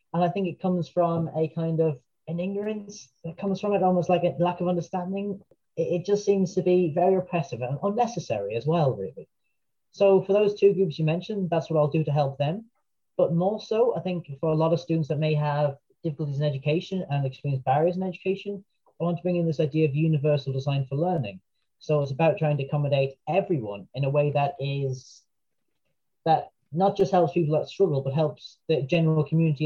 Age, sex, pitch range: 30-49, male, 145-180 Hz